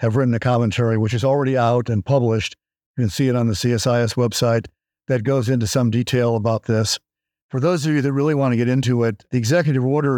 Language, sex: English, male